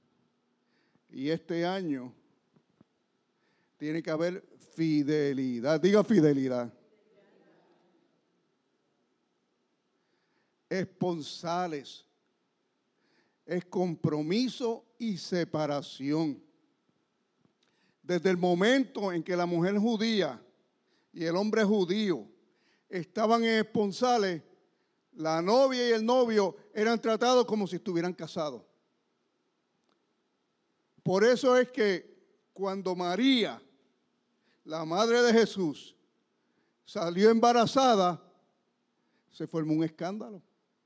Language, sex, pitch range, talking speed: English, male, 170-230 Hz, 80 wpm